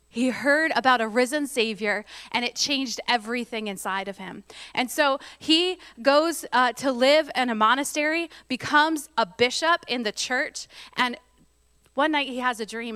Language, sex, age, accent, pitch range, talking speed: English, female, 20-39, American, 200-250 Hz, 165 wpm